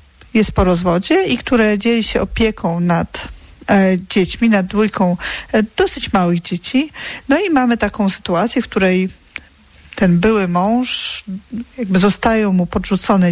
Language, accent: Polish, native